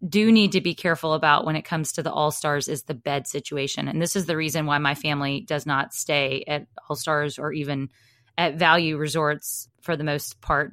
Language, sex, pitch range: English, female, 145-180 Hz